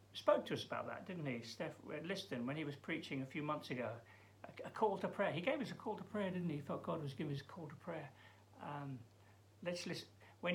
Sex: male